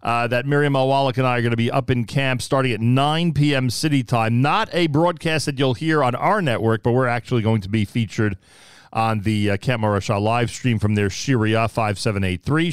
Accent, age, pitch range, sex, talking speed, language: American, 40-59, 100-125 Hz, male, 215 wpm, English